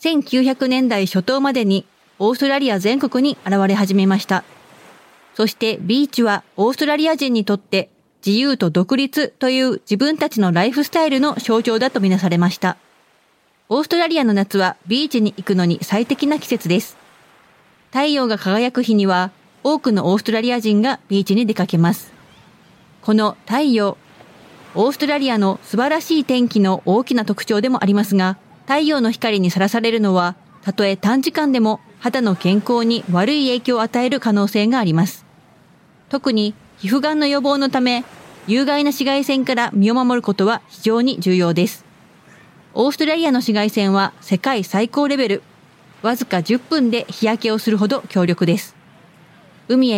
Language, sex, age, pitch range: Japanese, female, 30-49, 195-260 Hz